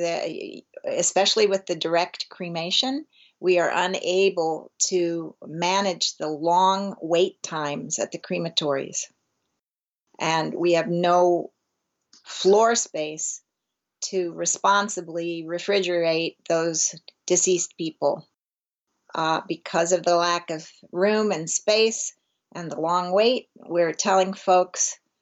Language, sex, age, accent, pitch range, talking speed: English, female, 40-59, American, 165-190 Hz, 105 wpm